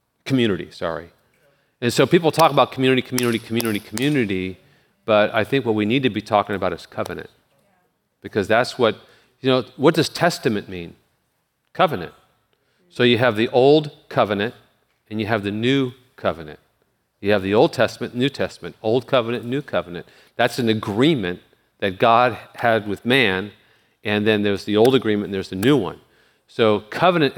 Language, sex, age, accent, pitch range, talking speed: English, male, 40-59, American, 105-130 Hz, 170 wpm